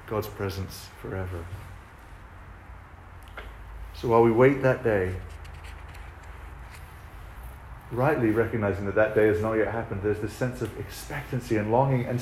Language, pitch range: English, 95-130 Hz